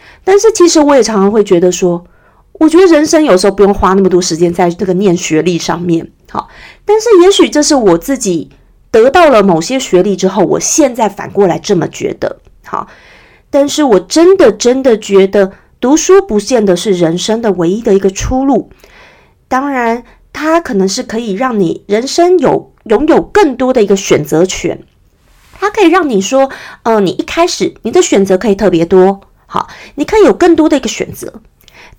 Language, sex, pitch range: Chinese, female, 195-315 Hz